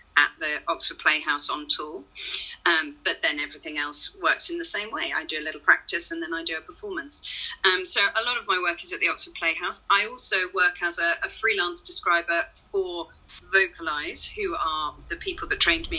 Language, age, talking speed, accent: English, 40-59, 210 wpm, British